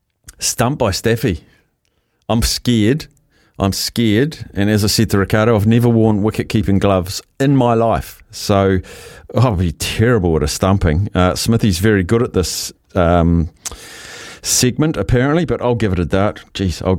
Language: English